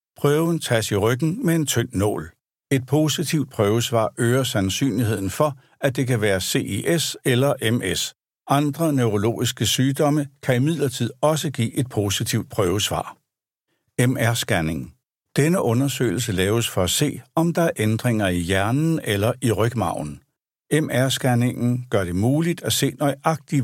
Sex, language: male, Danish